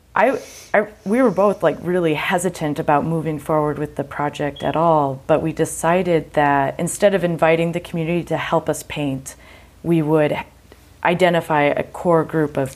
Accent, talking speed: American, 170 wpm